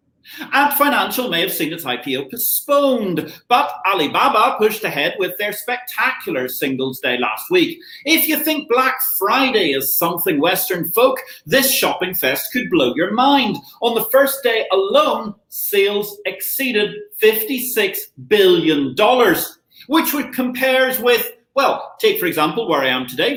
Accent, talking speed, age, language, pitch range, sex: British, 145 wpm, 40-59, English, 185-280 Hz, male